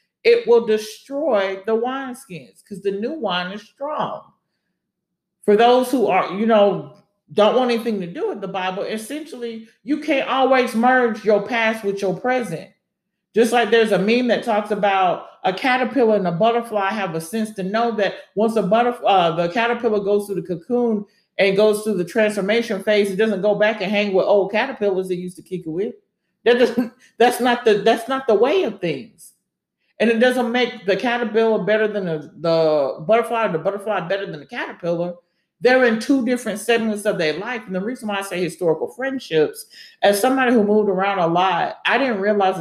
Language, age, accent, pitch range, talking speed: English, 40-59, American, 190-235 Hz, 195 wpm